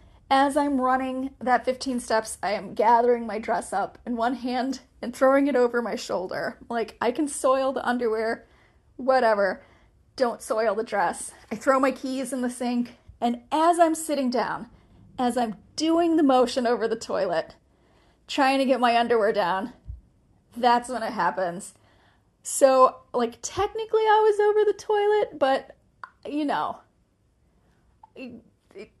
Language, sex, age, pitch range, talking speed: English, female, 30-49, 235-290 Hz, 155 wpm